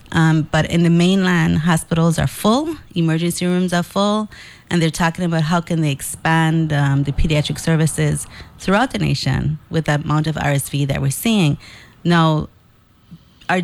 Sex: female